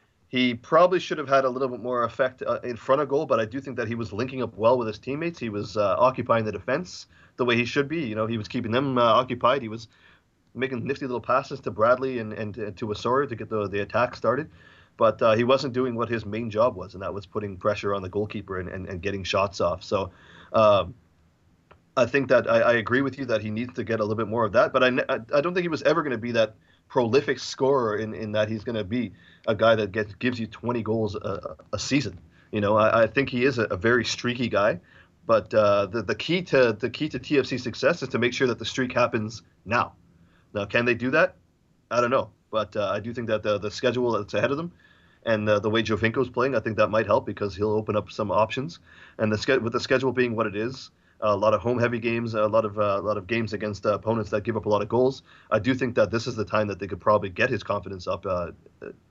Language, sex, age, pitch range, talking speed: English, male, 30-49, 105-125 Hz, 265 wpm